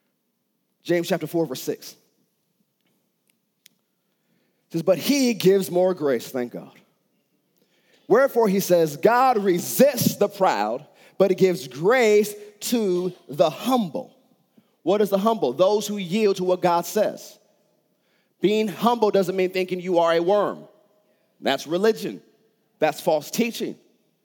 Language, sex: English, male